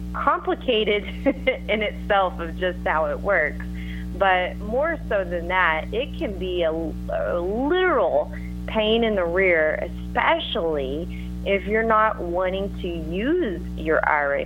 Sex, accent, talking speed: female, American, 135 wpm